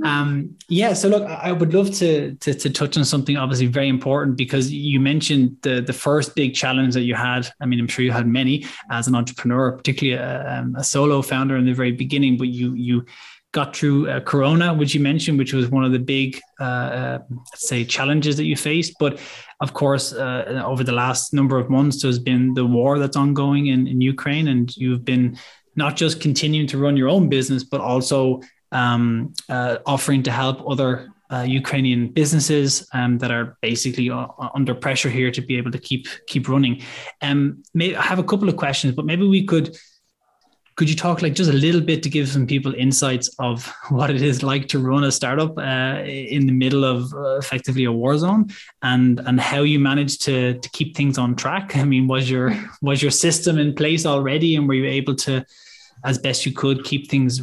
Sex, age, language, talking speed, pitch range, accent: male, 20-39, English, 210 wpm, 130-145 Hz, Irish